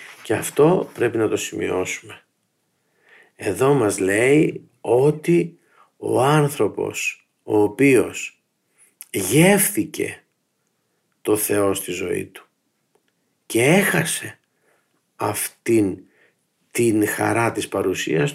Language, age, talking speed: Greek, 50-69, 90 wpm